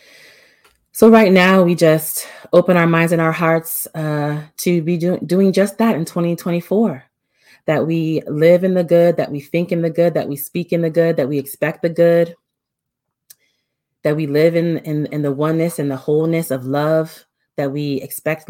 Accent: American